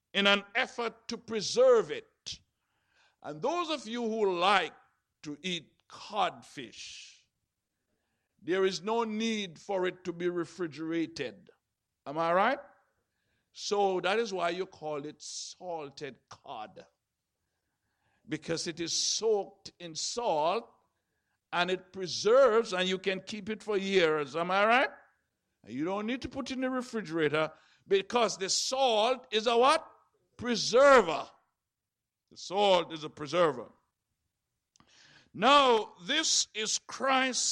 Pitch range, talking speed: 180-255 Hz, 130 wpm